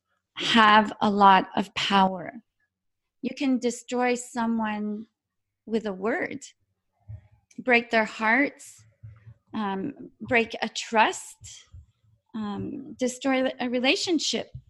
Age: 40-59